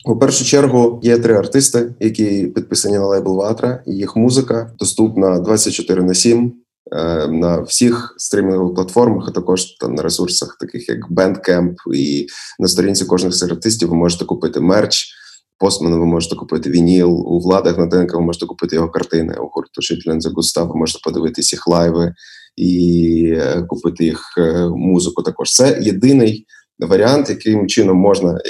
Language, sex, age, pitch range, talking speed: Ukrainian, male, 20-39, 90-115 Hz, 150 wpm